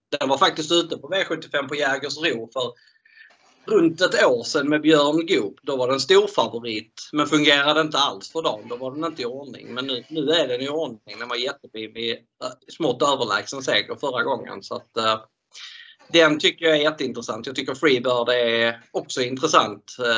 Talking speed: 195 wpm